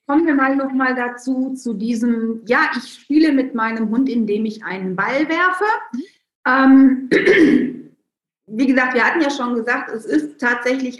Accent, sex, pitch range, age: German, female, 210-265 Hz, 40-59